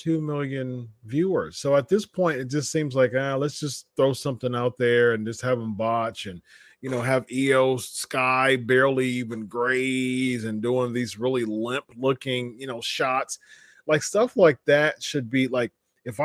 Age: 30-49